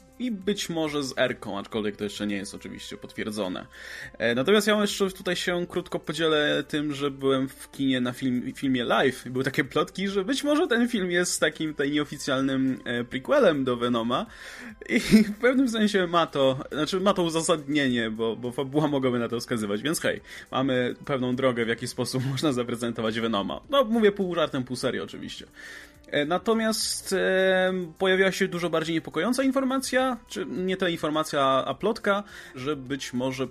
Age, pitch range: 20-39, 125-185 Hz